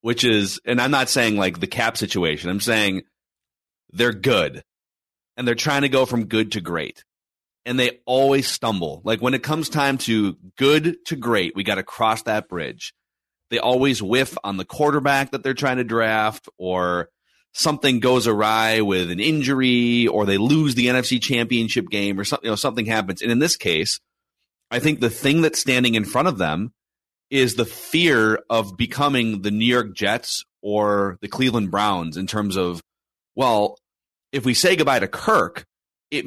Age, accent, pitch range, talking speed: 30-49, American, 105-135 Hz, 185 wpm